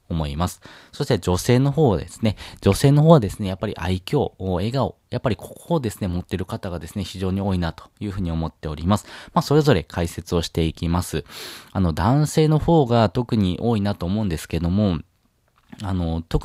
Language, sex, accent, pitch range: Japanese, male, native, 90-120 Hz